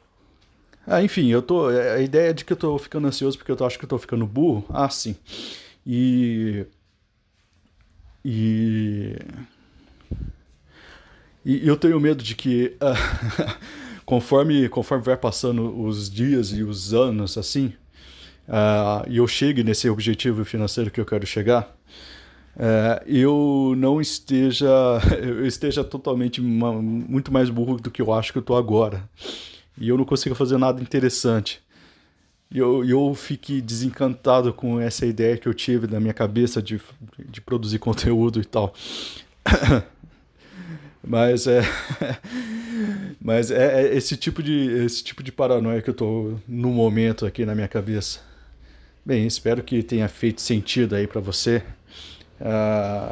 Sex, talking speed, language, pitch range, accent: male, 145 wpm, Portuguese, 105-130 Hz, Brazilian